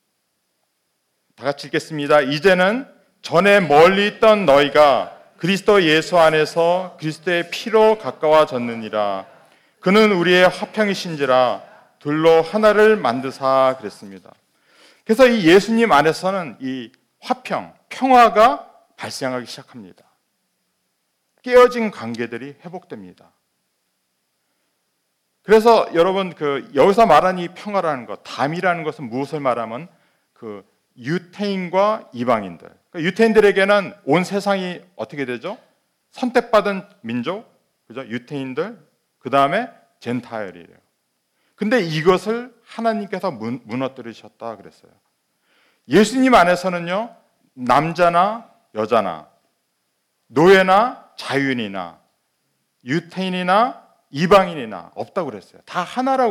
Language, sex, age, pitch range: Korean, male, 40-59, 135-210 Hz